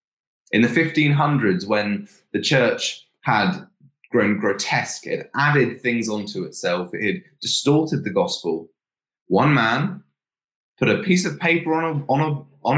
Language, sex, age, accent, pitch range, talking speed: English, male, 20-39, British, 120-155 Hz, 125 wpm